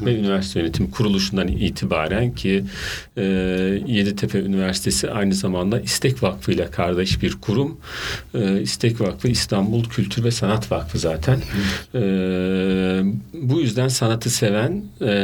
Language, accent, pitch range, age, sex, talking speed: Turkish, native, 95-130 Hz, 50-69, male, 125 wpm